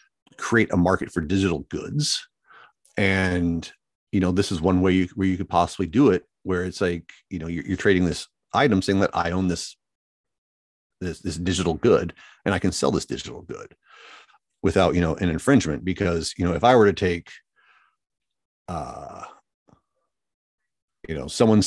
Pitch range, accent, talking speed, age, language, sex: 85-100 Hz, American, 175 wpm, 40-59, English, male